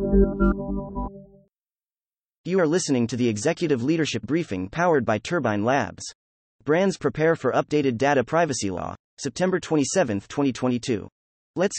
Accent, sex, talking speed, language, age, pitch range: American, male, 115 wpm, English, 30-49, 110-160 Hz